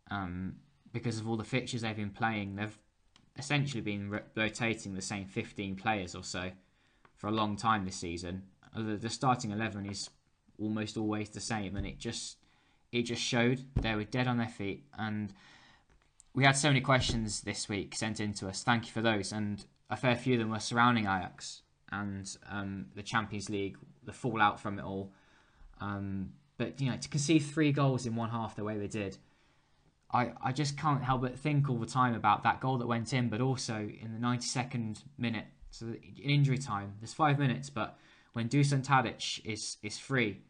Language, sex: English, male